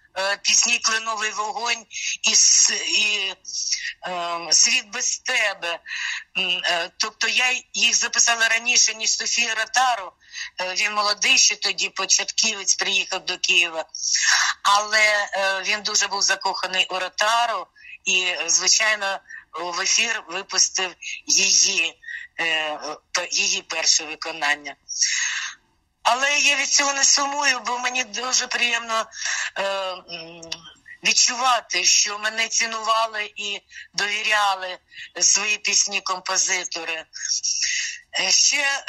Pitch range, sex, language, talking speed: 185-225 Hz, female, Russian, 90 wpm